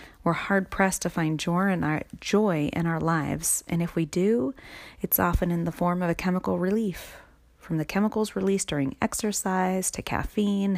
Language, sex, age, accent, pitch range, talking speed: English, female, 30-49, American, 150-185 Hz, 165 wpm